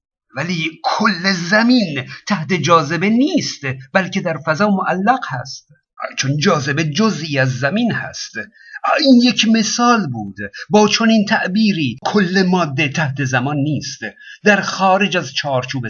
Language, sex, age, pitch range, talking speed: Persian, male, 50-69, 140-210 Hz, 130 wpm